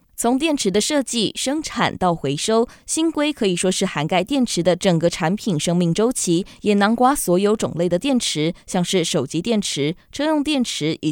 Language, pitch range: Chinese, 165-235 Hz